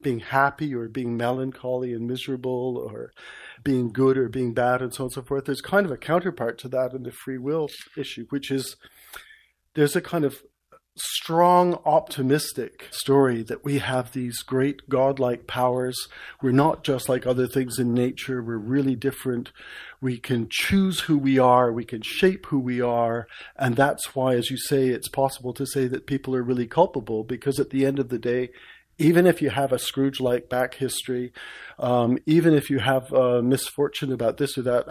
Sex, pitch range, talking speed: male, 125-140 Hz, 190 wpm